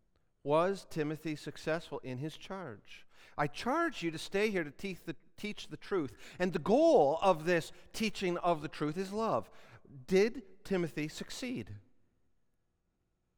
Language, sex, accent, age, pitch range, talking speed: English, male, American, 40-59, 135-185 Hz, 140 wpm